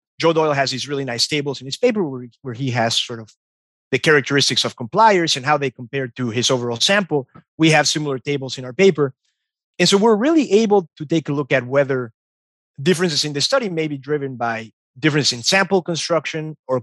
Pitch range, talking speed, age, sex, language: 130-175 Hz, 205 wpm, 30-49, male, English